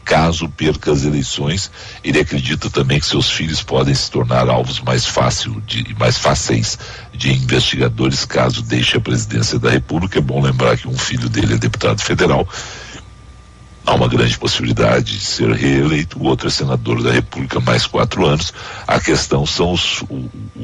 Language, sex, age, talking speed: Portuguese, male, 60-79, 170 wpm